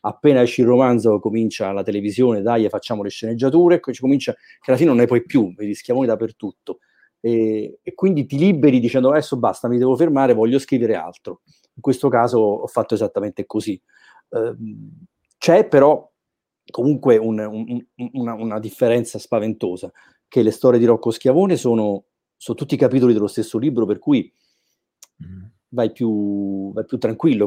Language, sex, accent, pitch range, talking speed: Italian, male, native, 110-130 Hz, 170 wpm